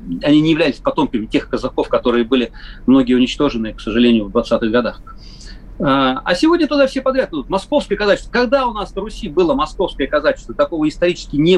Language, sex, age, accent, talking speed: Russian, male, 40-59, native, 175 wpm